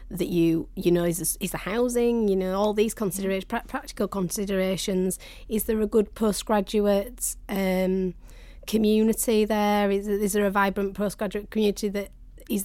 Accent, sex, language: British, female, English